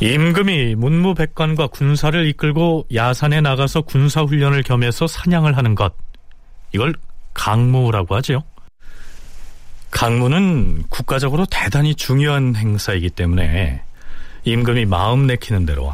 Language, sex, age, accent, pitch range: Korean, male, 40-59, native, 100-155 Hz